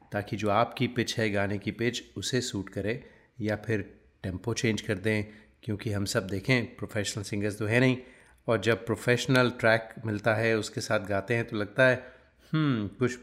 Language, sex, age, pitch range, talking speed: Hindi, male, 30-49, 105-125 Hz, 180 wpm